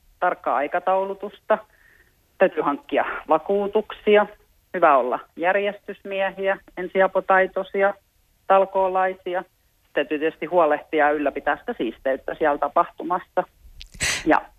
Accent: native